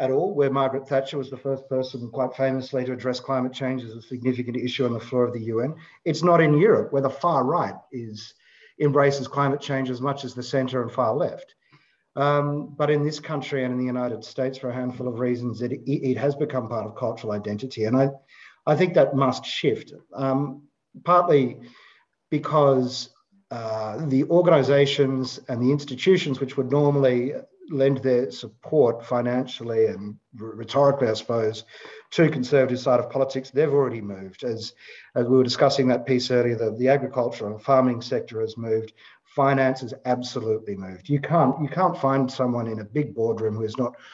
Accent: Australian